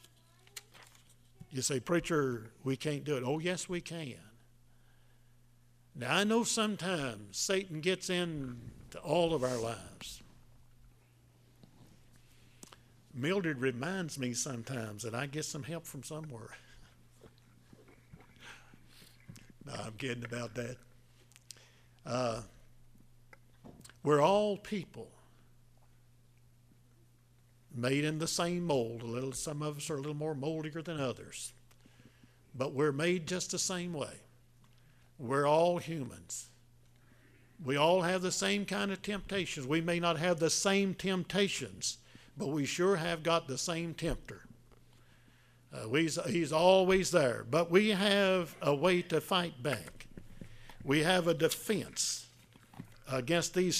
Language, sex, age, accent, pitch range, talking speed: English, male, 60-79, American, 120-170 Hz, 125 wpm